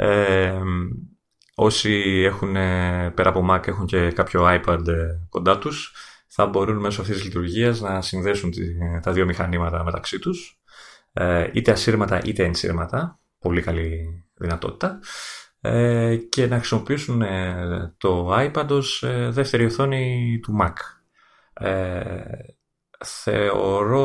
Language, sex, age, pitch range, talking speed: Greek, male, 30-49, 90-115 Hz, 100 wpm